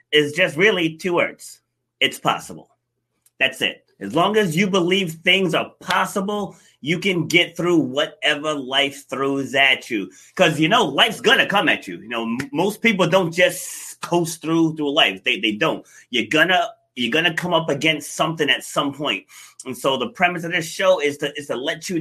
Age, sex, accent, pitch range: 30-49, male, American, 150-180 Hz